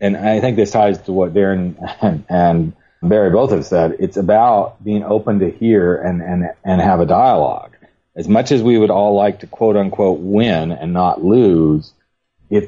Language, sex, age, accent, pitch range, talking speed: English, male, 40-59, American, 90-110 Hz, 190 wpm